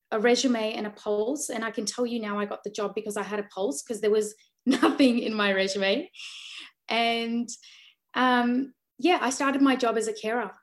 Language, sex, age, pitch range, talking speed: English, female, 20-39, 210-245 Hz, 210 wpm